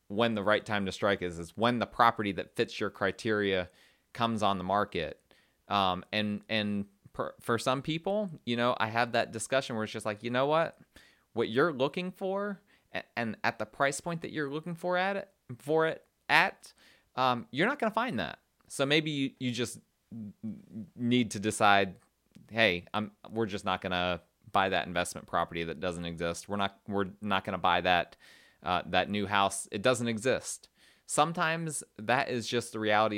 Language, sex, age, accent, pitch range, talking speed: English, male, 20-39, American, 105-140 Hz, 190 wpm